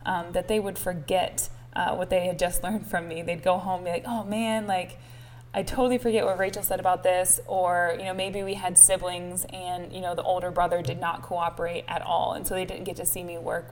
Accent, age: American, 10-29